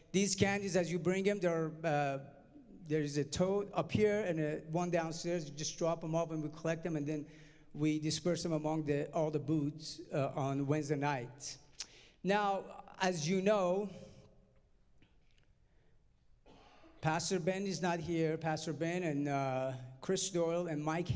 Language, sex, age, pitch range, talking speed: English, male, 50-69, 150-170 Hz, 155 wpm